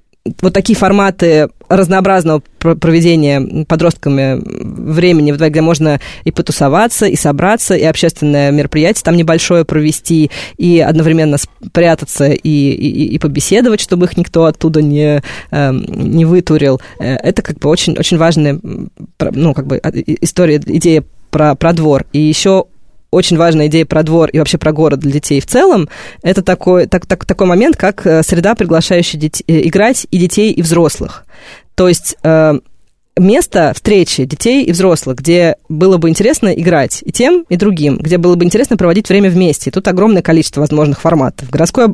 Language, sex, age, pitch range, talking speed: Russian, female, 20-39, 150-185 Hz, 150 wpm